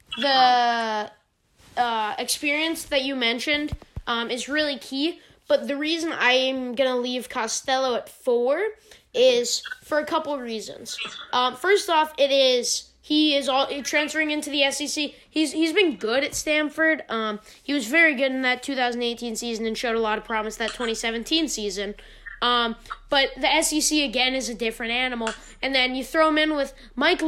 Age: 20-39